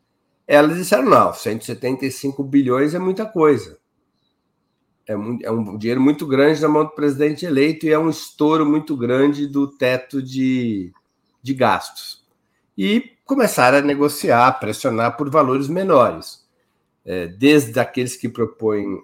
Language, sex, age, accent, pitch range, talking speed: Portuguese, male, 60-79, Brazilian, 120-160 Hz, 140 wpm